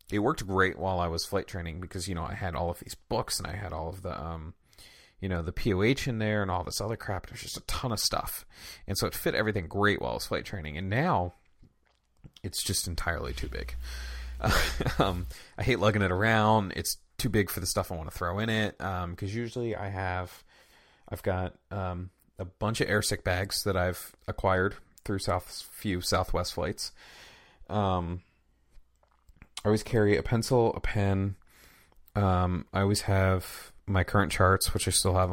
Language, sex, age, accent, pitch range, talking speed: English, male, 30-49, American, 85-100 Hz, 200 wpm